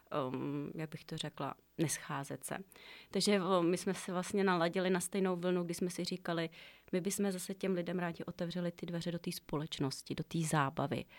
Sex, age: female, 30-49